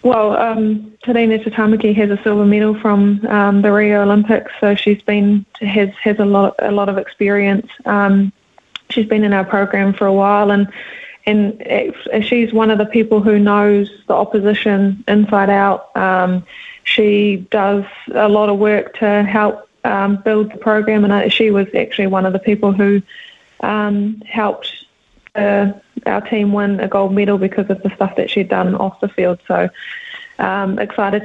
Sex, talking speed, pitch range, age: female, 180 wpm, 200-215 Hz, 20-39